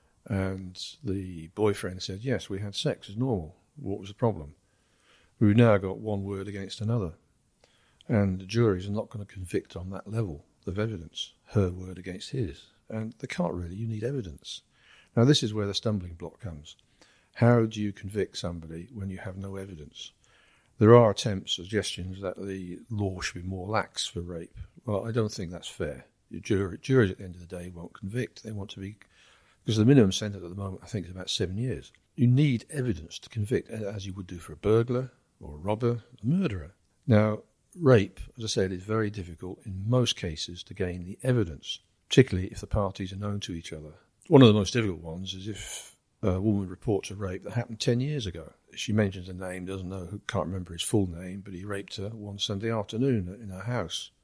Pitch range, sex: 95-110 Hz, male